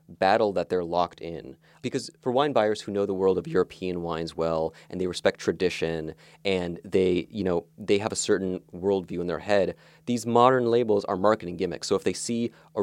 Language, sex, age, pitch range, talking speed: English, male, 30-49, 90-120 Hz, 205 wpm